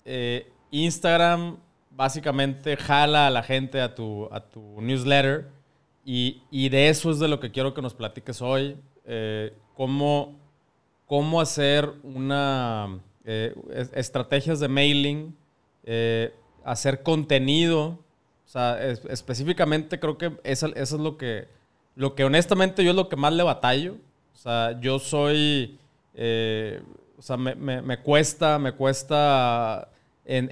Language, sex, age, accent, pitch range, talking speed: Spanish, male, 20-39, Mexican, 125-150 Hz, 120 wpm